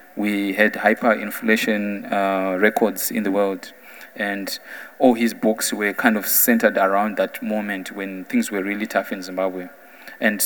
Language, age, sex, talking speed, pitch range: English, 20-39, male, 155 wpm, 100-115 Hz